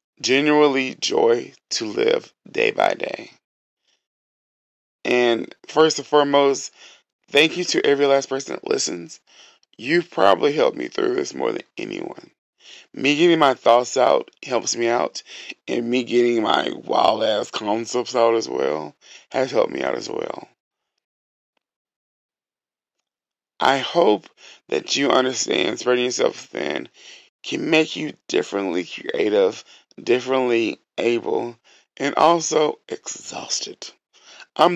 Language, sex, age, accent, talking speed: English, male, 20-39, American, 125 wpm